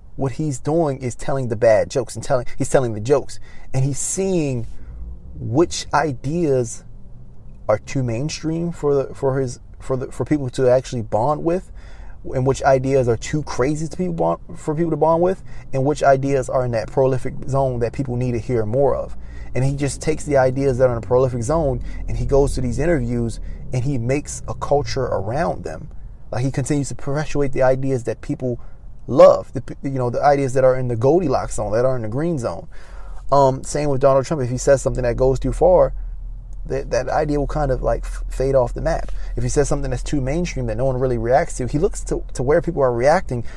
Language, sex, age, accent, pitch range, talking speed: English, male, 30-49, American, 120-145 Hz, 220 wpm